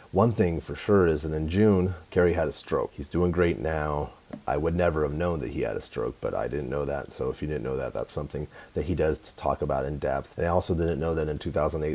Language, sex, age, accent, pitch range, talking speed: English, male, 30-49, American, 75-90 Hz, 275 wpm